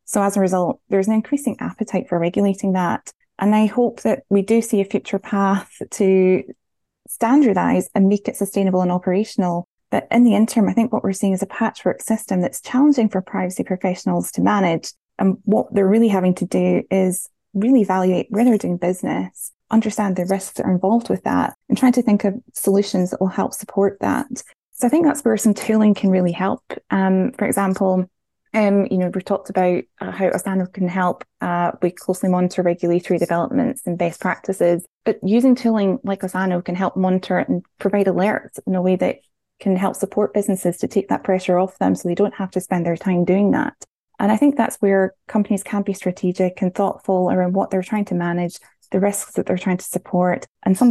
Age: 10-29